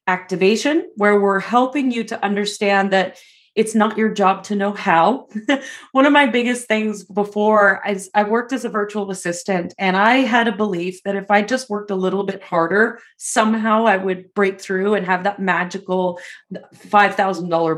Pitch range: 190-225 Hz